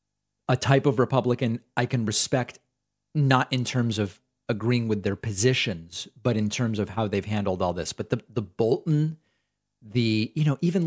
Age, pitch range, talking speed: 40-59, 105-135 Hz, 175 wpm